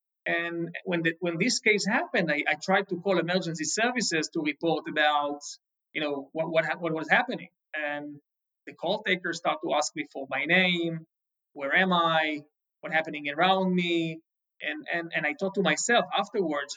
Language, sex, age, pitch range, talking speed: English, male, 30-49, 160-195 Hz, 185 wpm